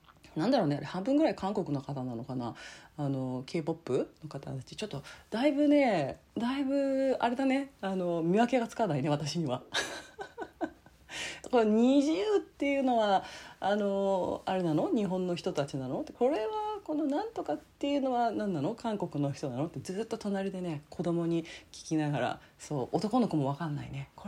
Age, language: 40-59, Japanese